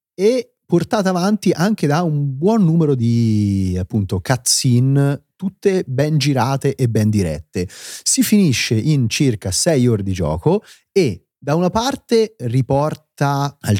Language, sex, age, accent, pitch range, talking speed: Italian, male, 30-49, native, 100-150 Hz, 135 wpm